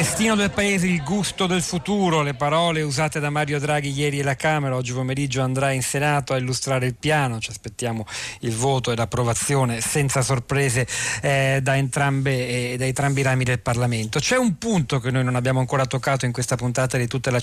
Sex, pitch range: male, 125-150 Hz